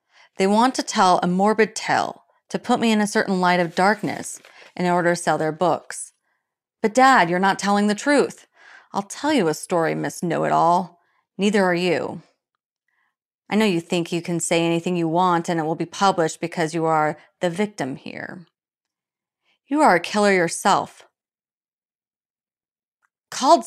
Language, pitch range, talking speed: English, 175-210 Hz, 165 wpm